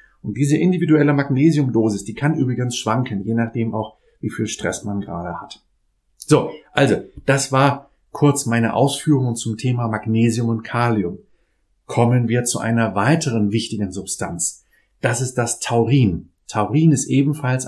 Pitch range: 105-130 Hz